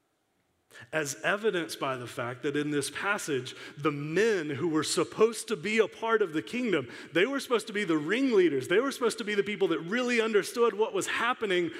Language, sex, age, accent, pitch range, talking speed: English, male, 30-49, American, 140-220 Hz, 210 wpm